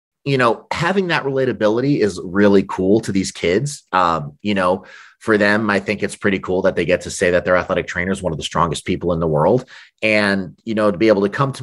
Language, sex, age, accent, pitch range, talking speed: English, male, 30-49, American, 95-110 Hz, 250 wpm